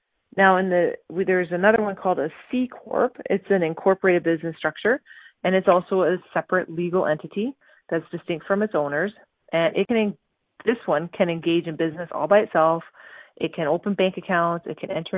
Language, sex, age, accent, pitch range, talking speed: English, female, 30-49, American, 165-195 Hz, 185 wpm